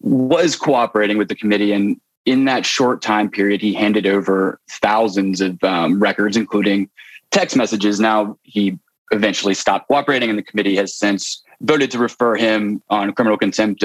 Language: English